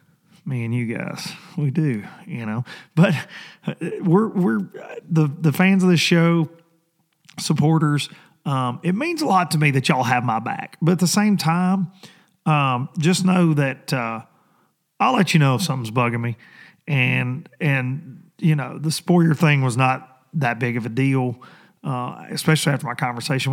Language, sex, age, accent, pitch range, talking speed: English, male, 40-59, American, 130-180 Hz, 170 wpm